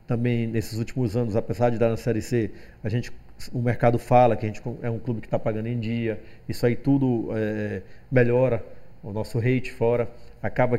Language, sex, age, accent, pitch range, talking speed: English, male, 40-59, Brazilian, 115-150 Hz, 200 wpm